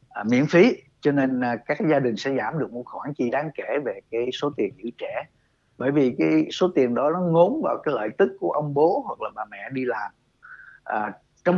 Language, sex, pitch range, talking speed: Vietnamese, male, 125-165 Hz, 240 wpm